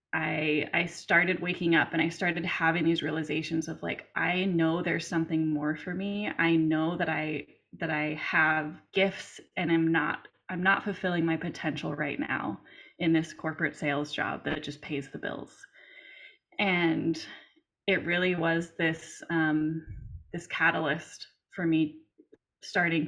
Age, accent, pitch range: 20-39, American, 155-175 Hz